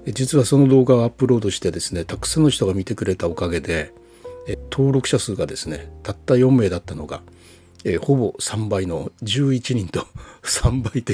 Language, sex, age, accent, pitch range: Japanese, male, 60-79, native, 85-130 Hz